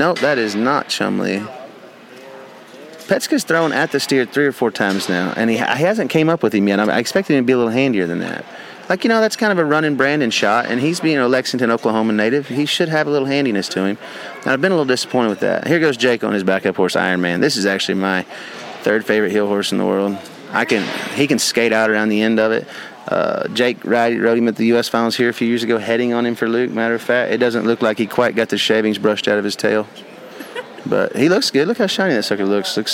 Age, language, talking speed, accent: 30-49, English, 270 wpm, American